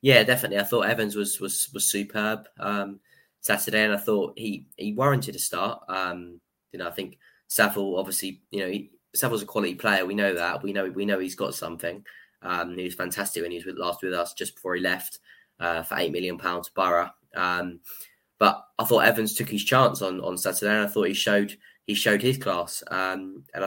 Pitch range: 90-105 Hz